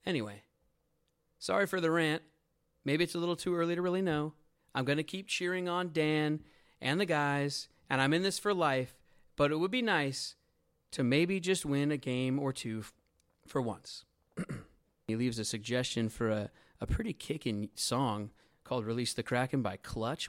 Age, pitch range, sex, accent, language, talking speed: 30-49, 120-175 Hz, male, American, English, 180 wpm